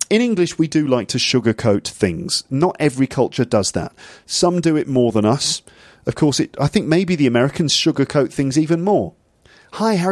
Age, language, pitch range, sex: 30-49, English, 110-150 Hz, male